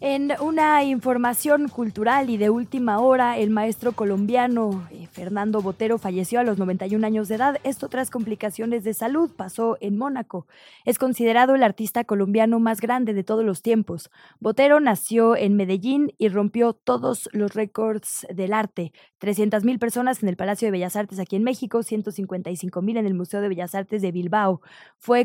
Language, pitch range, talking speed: Spanish, 195-240 Hz, 170 wpm